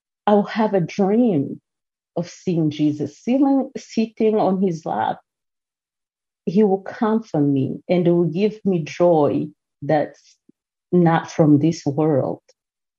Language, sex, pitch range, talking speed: English, female, 150-185 Hz, 135 wpm